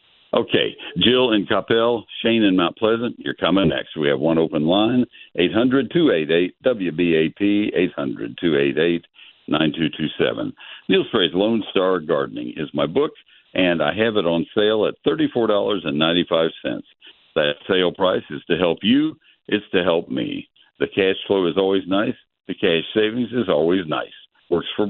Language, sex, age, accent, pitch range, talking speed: English, male, 60-79, American, 80-115 Hz, 140 wpm